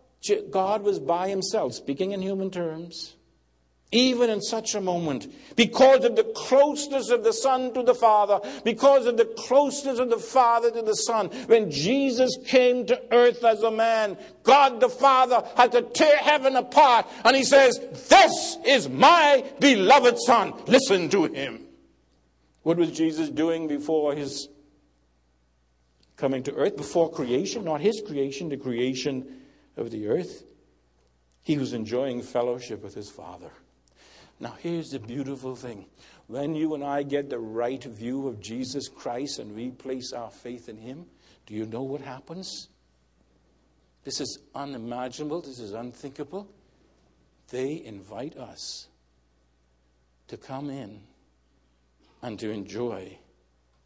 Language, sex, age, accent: English, male, 60-79, American